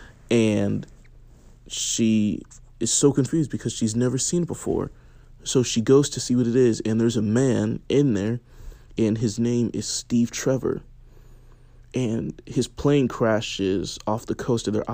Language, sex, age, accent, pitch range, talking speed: English, male, 20-39, American, 110-125 Hz, 160 wpm